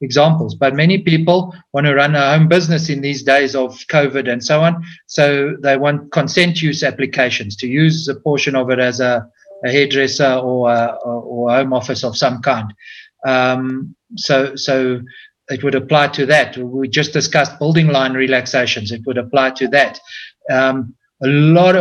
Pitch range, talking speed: 130-155 Hz, 175 wpm